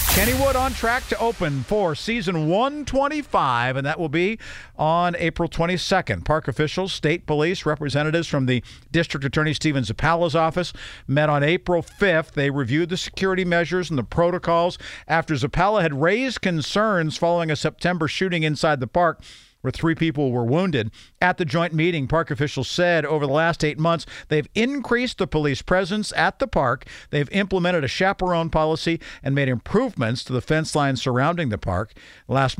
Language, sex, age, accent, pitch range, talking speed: English, male, 50-69, American, 135-175 Hz, 170 wpm